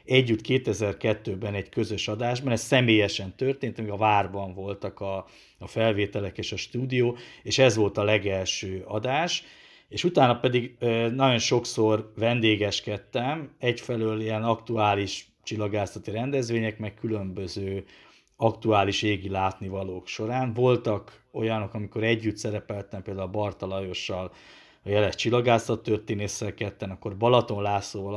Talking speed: 125 wpm